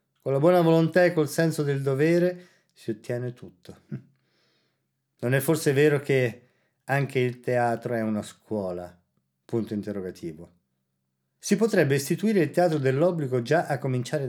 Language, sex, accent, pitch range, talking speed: Italian, male, native, 110-160 Hz, 145 wpm